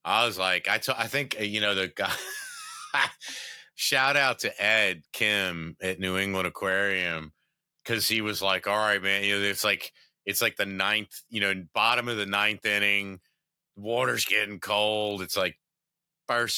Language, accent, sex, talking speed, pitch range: English, American, male, 175 wpm, 95-120 Hz